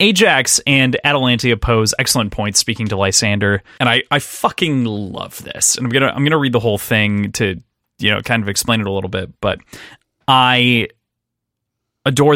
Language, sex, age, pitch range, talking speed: English, male, 30-49, 110-140 Hz, 180 wpm